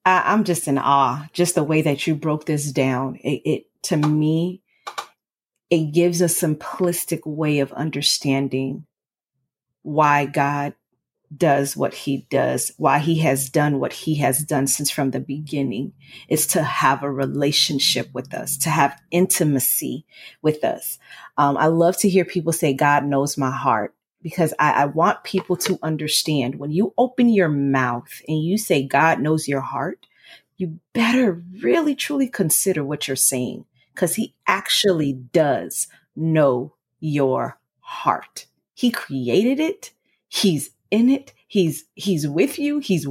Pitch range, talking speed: 140-185 Hz, 150 wpm